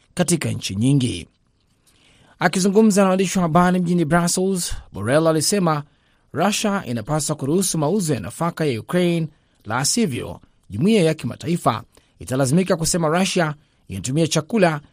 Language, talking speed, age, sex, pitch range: Swahili, 115 wpm, 30-49, male, 130-180 Hz